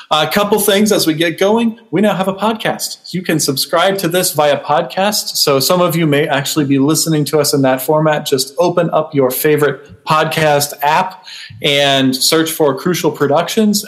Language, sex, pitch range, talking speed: English, male, 145-185 Hz, 190 wpm